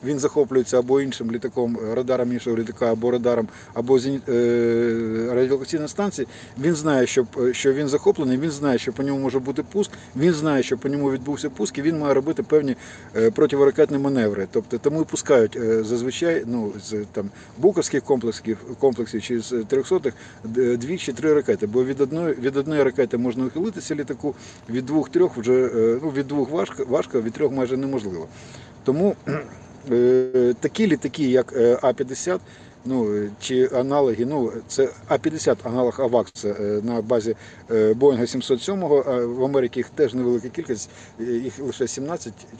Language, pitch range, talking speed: Ukrainian, 120-145 Hz, 160 wpm